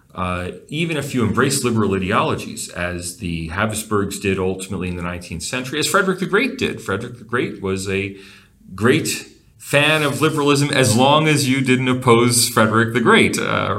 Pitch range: 95-125 Hz